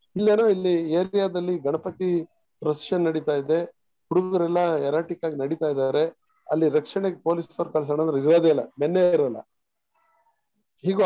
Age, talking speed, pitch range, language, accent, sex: 60-79, 115 wpm, 150-185 Hz, Kannada, native, male